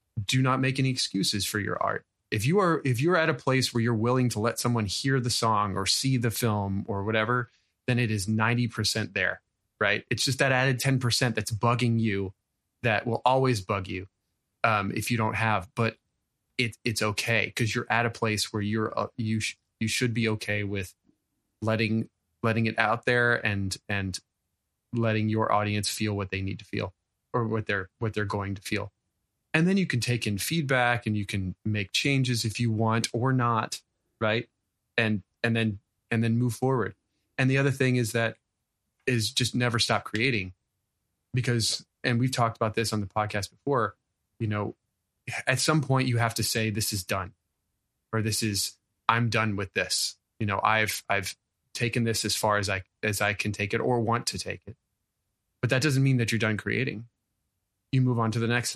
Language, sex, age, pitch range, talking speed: English, male, 20-39, 100-120 Hz, 205 wpm